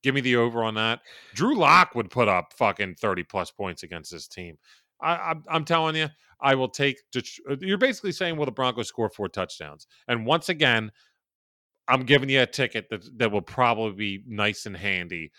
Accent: American